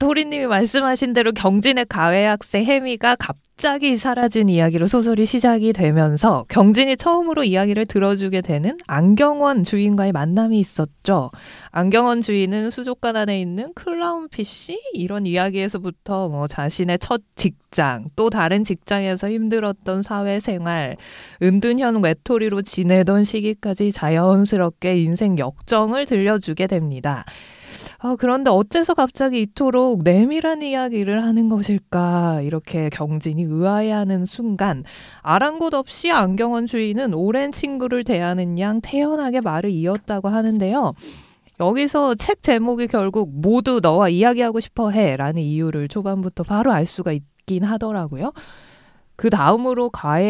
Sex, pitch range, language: female, 180-240 Hz, Korean